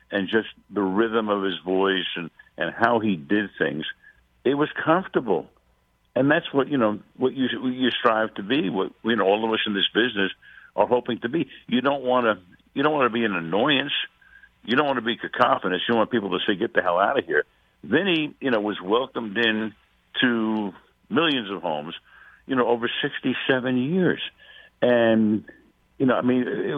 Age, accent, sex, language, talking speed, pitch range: 60-79, American, male, English, 205 wpm, 95-125 Hz